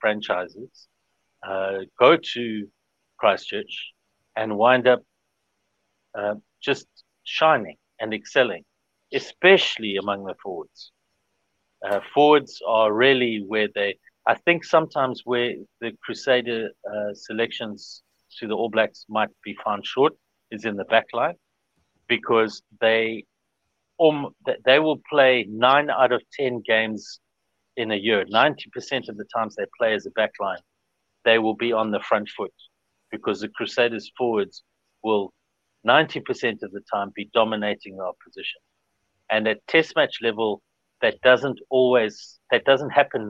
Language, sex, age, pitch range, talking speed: English, male, 60-79, 105-130 Hz, 135 wpm